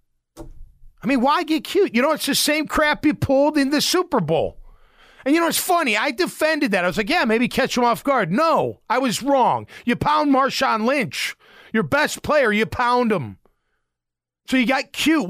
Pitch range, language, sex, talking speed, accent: 210-290 Hz, English, male, 205 wpm, American